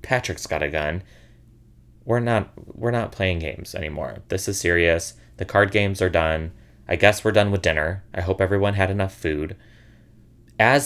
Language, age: English, 30-49